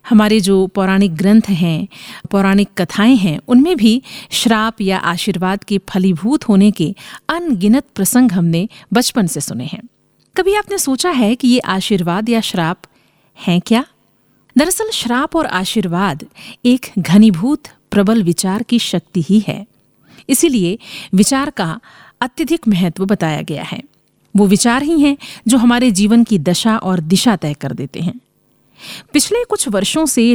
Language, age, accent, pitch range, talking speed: Hindi, 50-69, native, 190-255 Hz, 145 wpm